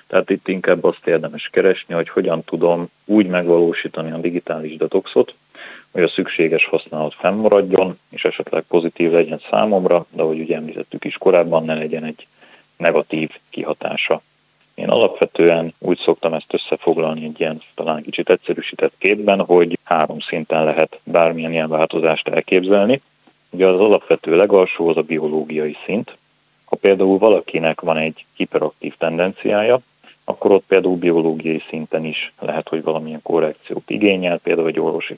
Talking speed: 140 wpm